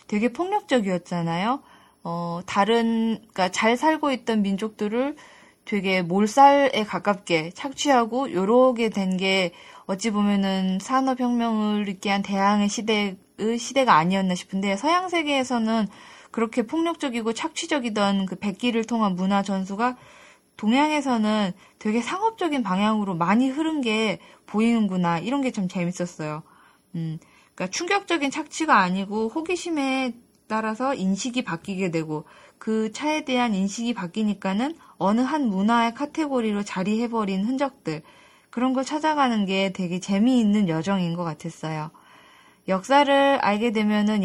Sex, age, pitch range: female, 20-39, 185-250 Hz